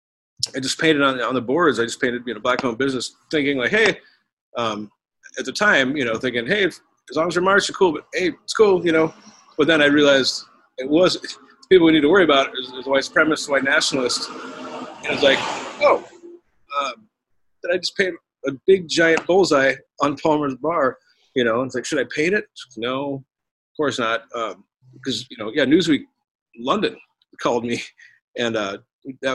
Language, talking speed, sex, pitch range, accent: English, 205 wpm, male, 120-160 Hz, American